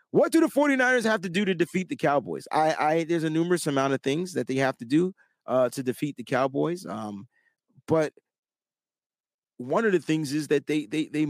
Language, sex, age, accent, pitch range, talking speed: English, male, 30-49, American, 140-175 Hz, 210 wpm